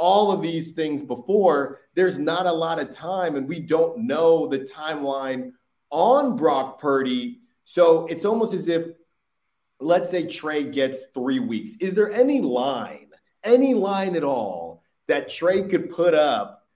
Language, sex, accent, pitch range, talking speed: English, male, American, 140-180 Hz, 160 wpm